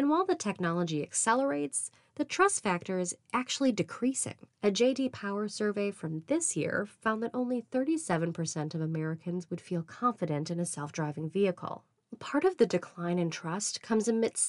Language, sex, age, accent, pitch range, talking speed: English, female, 20-39, American, 165-230 Hz, 160 wpm